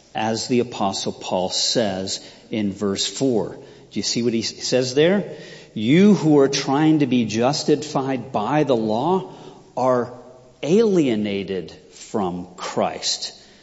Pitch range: 105-160 Hz